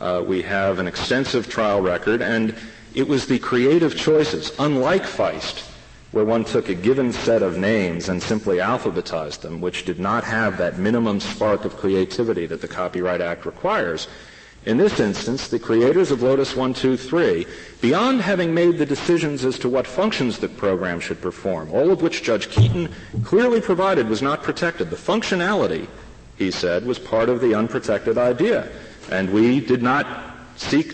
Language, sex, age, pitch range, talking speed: English, male, 40-59, 110-150 Hz, 170 wpm